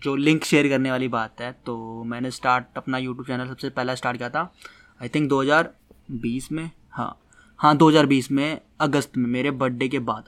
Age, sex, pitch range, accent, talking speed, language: 20-39, male, 130-170 Hz, native, 185 wpm, Hindi